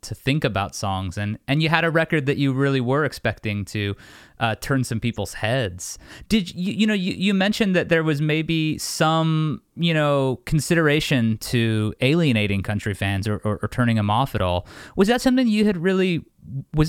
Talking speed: 195 wpm